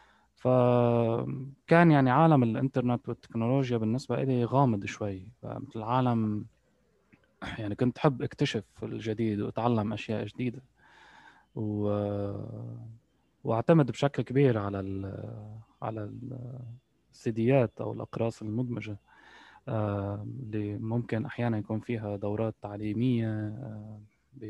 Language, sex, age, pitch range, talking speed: Arabic, male, 20-39, 110-130 Hz, 100 wpm